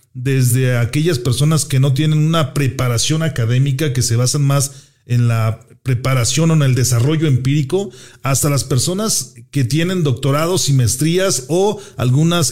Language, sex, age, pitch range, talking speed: Spanish, male, 40-59, 120-145 Hz, 150 wpm